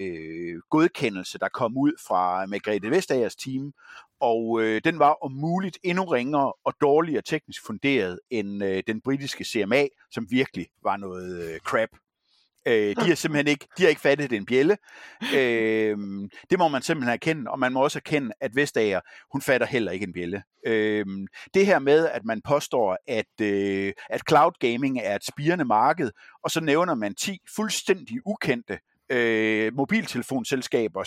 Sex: male